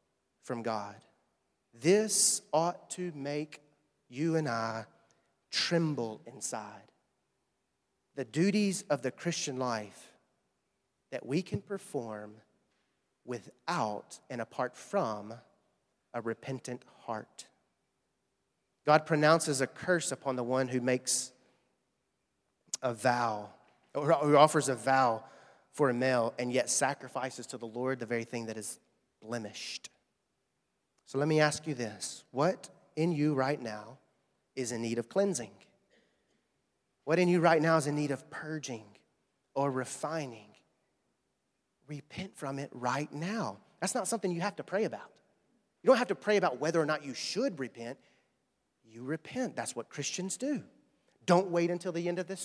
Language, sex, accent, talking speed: English, male, American, 140 wpm